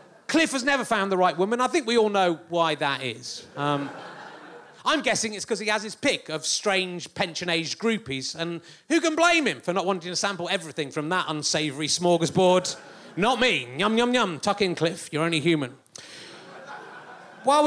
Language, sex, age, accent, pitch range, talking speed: English, male, 30-49, British, 175-255 Hz, 185 wpm